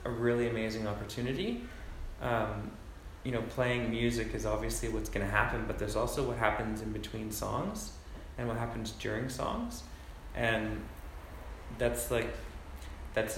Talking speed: 140 wpm